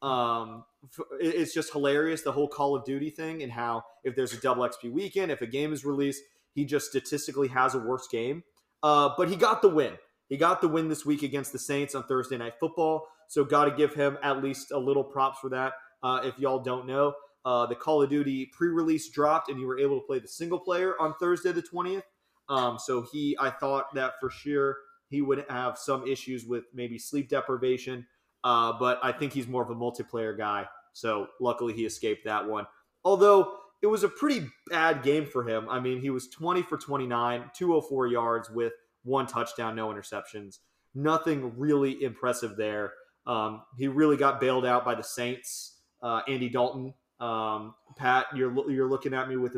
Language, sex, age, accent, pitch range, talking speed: English, male, 30-49, American, 125-145 Hz, 200 wpm